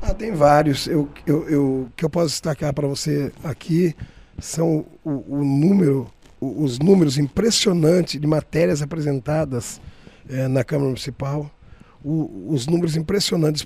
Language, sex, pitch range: Portuguese, male, 135-160 Hz